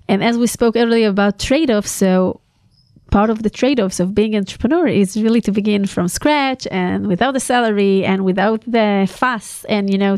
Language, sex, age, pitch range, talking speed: Hebrew, female, 30-49, 195-250 Hz, 190 wpm